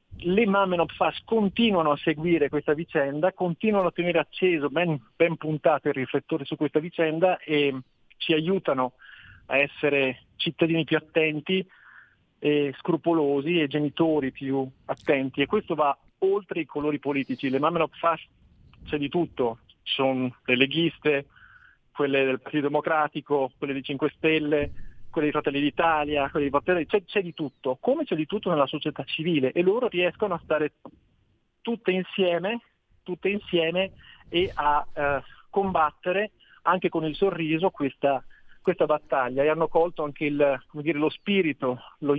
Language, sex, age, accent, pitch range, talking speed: Italian, male, 40-59, native, 140-170 Hz, 150 wpm